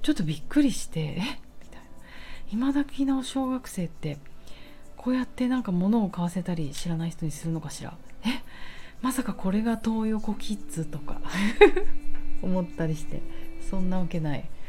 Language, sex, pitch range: Japanese, female, 155-235 Hz